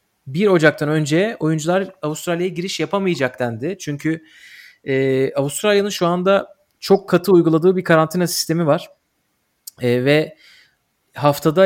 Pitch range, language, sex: 135-175 Hz, Turkish, male